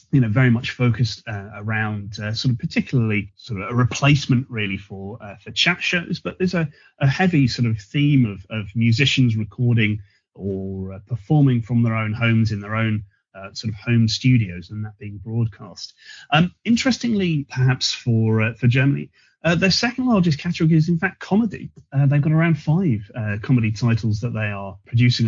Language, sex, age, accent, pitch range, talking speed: English, male, 30-49, British, 110-140 Hz, 190 wpm